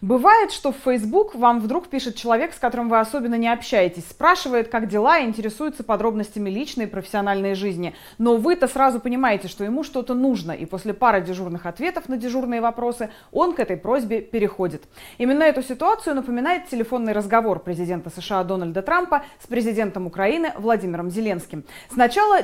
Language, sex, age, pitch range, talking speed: Russian, female, 20-39, 200-280 Hz, 165 wpm